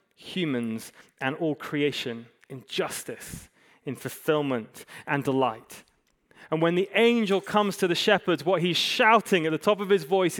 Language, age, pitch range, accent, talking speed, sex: English, 30-49, 130-190 Hz, British, 155 wpm, male